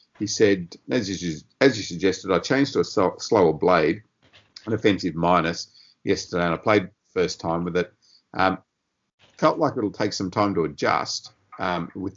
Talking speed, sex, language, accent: 170 wpm, male, English, Australian